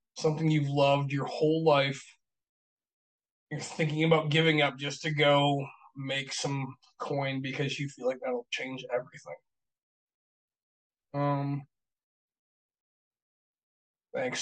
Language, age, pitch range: English, 20-39, 135-155 Hz